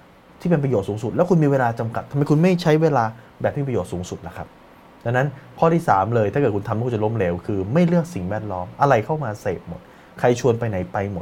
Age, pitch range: 20-39, 105-150 Hz